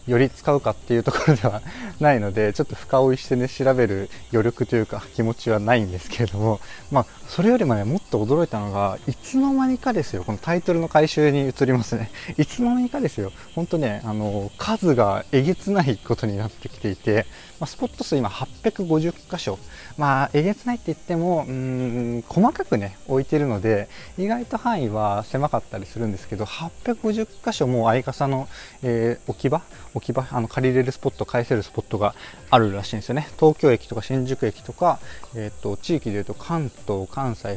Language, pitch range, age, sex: Japanese, 110-155 Hz, 20-39, male